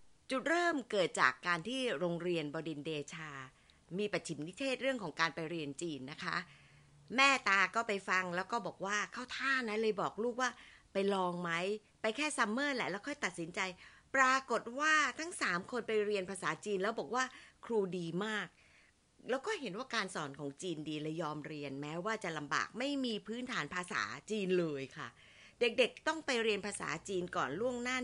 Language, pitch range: Thai, 165-230 Hz